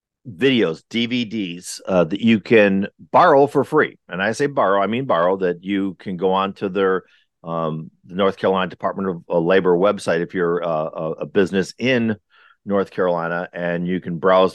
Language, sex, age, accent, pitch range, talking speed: English, male, 50-69, American, 90-105 Hz, 175 wpm